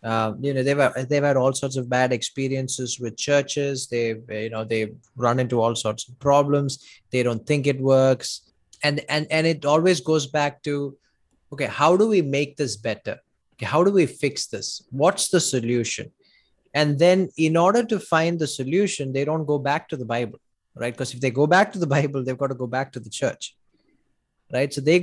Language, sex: English, male